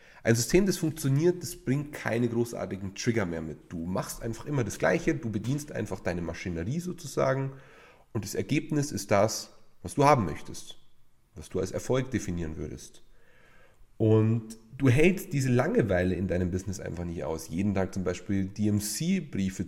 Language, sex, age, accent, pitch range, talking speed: German, male, 30-49, German, 95-120 Hz, 165 wpm